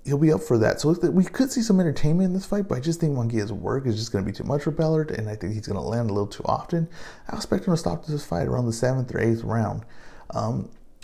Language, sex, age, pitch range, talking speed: English, male, 30-49, 110-145 Hz, 290 wpm